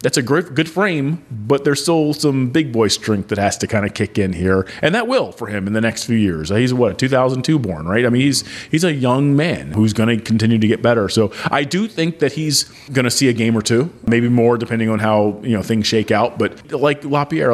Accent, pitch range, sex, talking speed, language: American, 110-130 Hz, male, 255 wpm, English